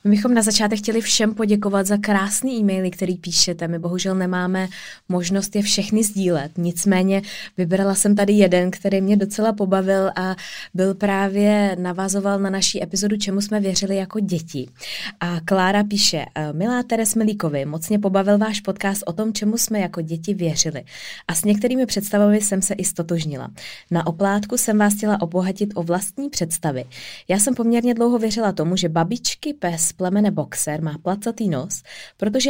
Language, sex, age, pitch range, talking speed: Czech, female, 20-39, 170-210 Hz, 165 wpm